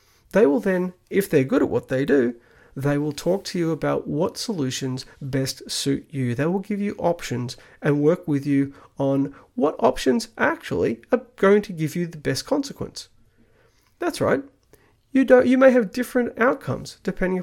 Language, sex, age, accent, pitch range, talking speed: English, male, 30-49, Australian, 135-205 Hz, 180 wpm